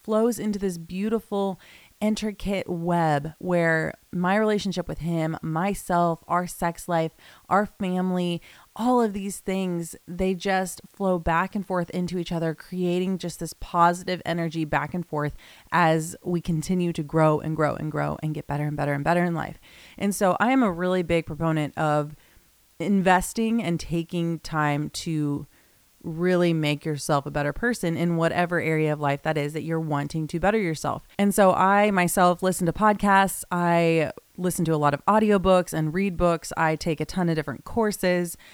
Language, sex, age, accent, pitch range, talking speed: English, female, 30-49, American, 160-185 Hz, 175 wpm